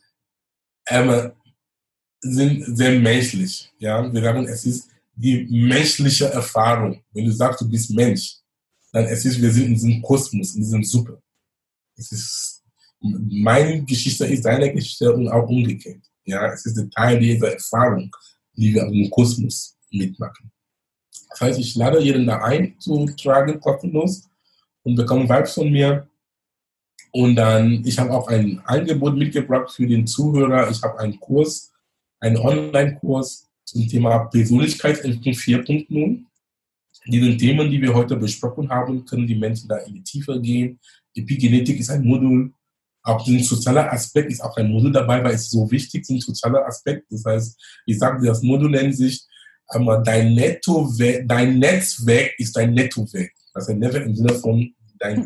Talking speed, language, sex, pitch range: 160 wpm, German, male, 115-135 Hz